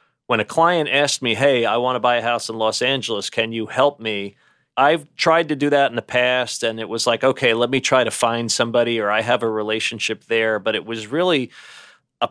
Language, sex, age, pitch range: English, male, 30-49, 105-120 Hz